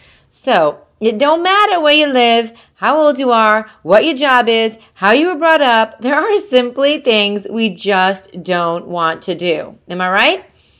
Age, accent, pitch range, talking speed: 30-49, American, 190-260 Hz, 185 wpm